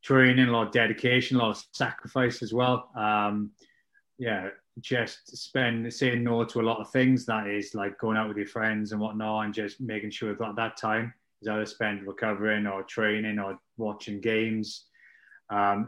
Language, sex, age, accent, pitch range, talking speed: English, male, 20-39, British, 105-125 Hz, 195 wpm